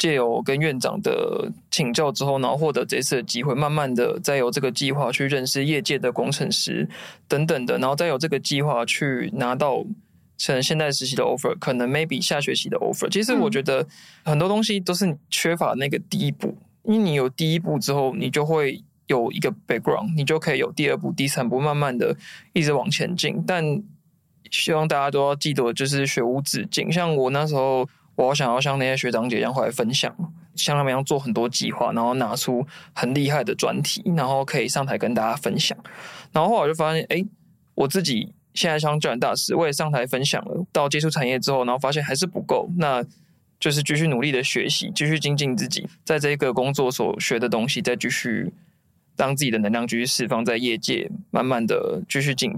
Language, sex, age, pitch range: Chinese, male, 20-39, 135-170 Hz